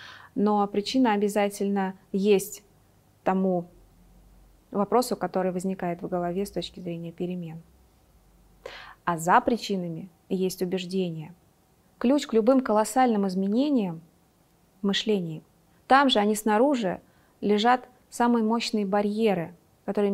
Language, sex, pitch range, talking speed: Russian, female, 185-225 Hz, 105 wpm